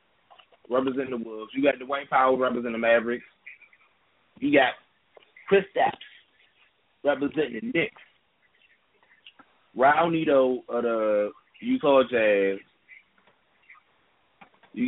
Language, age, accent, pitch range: English, 20-39, American, 115-155 Hz